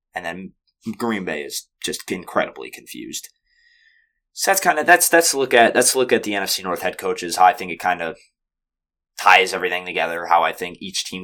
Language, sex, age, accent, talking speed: English, male, 20-39, American, 215 wpm